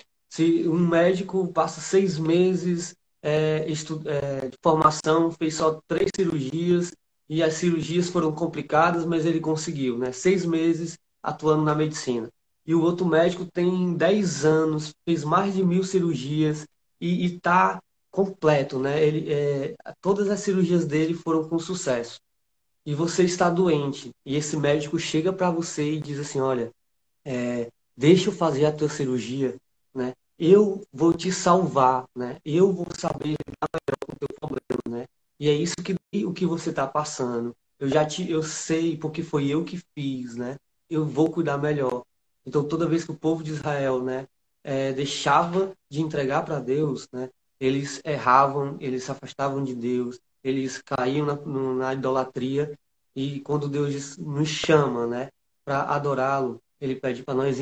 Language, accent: Portuguese, Brazilian